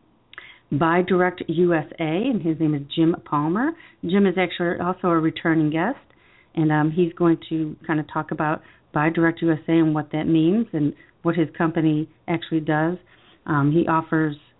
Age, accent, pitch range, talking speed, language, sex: 40-59, American, 155-205 Hz, 185 wpm, English, female